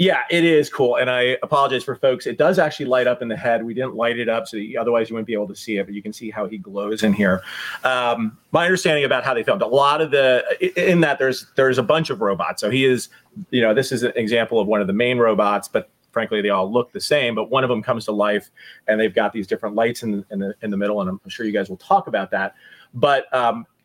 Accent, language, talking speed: American, English, 280 wpm